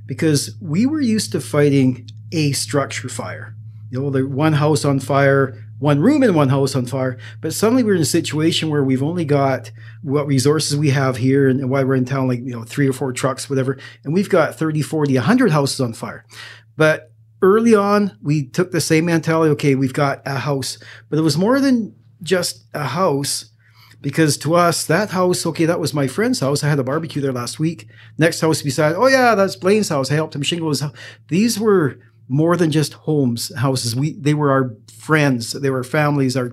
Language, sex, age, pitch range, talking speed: English, male, 40-59, 130-160 Hz, 210 wpm